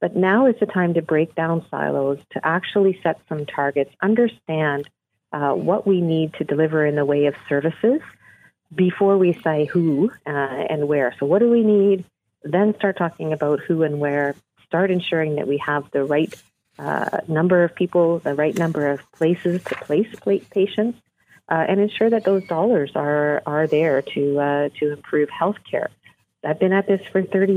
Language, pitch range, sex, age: English, 150-195 Hz, female, 40-59